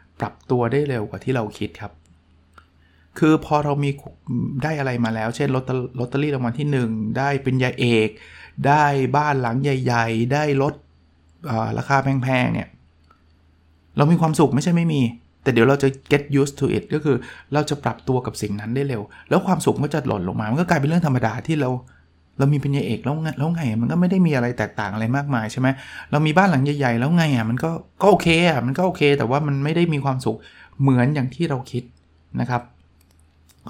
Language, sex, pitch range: Thai, male, 110-145 Hz